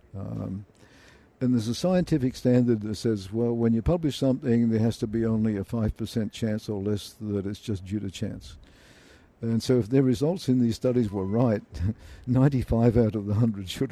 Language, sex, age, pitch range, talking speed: English, male, 60-79, 100-120 Hz, 195 wpm